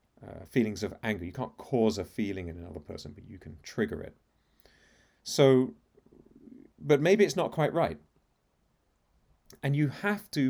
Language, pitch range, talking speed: English, 105-140 Hz, 160 wpm